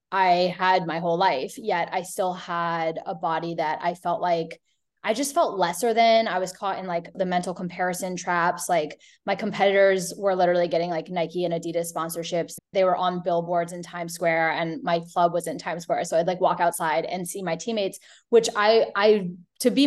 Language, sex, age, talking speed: English, female, 10-29, 205 wpm